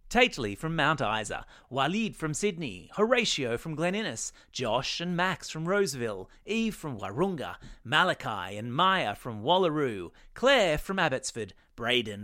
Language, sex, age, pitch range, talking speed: English, male, 30-49, 125-190 Hz, 135 wpm